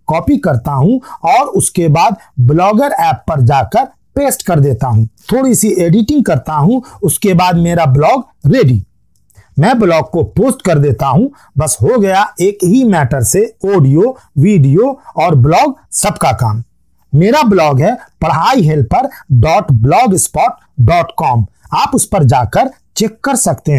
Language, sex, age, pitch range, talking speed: Hindi, male, 50-69, 140-220 Hz, 155 wpm